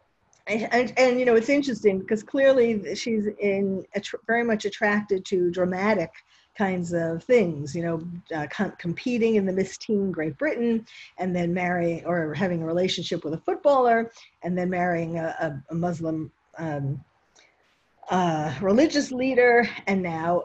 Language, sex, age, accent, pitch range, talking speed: English, female, 50-69, American, 180-240 Hz, 160 wpm